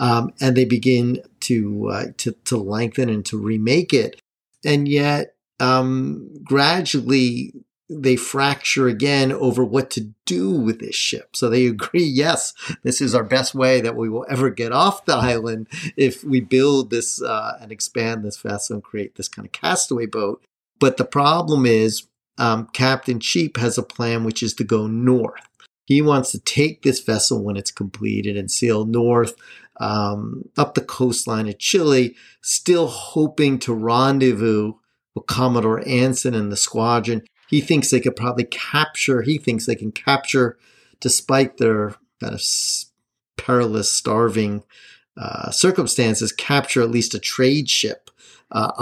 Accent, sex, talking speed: American, male, 155 wpm